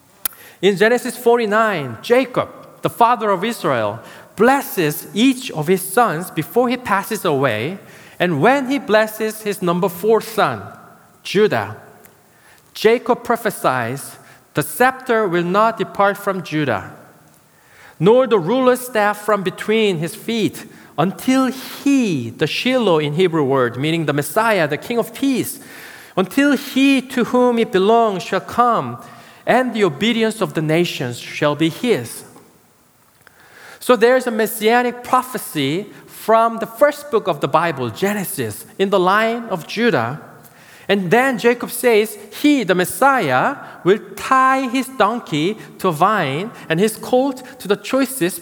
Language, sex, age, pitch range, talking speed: English, male, 40-59, 175-245 Hz, 140 wpm